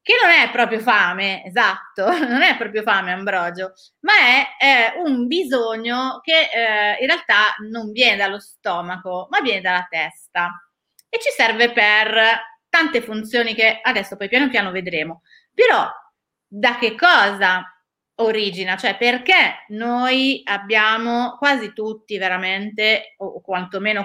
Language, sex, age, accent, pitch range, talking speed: Italian, female, 30-49, native, 195-245 Hz, 135 wpm